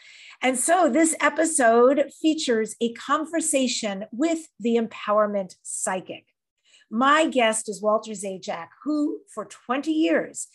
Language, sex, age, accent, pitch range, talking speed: English, female, 40-59, American, 220-275 Hz, 115 wpm